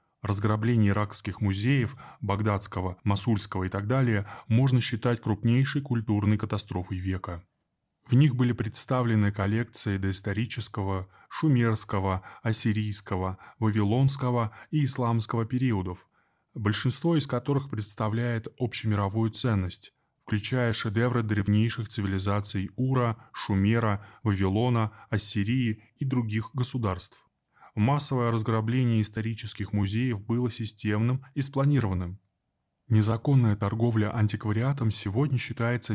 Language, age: Russian, 20-39